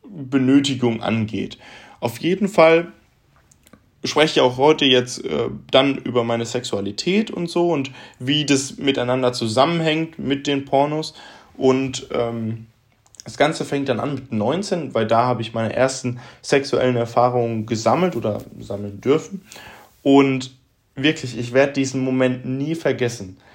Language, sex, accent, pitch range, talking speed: German, male, German, 125-165 Hz, 140 wpm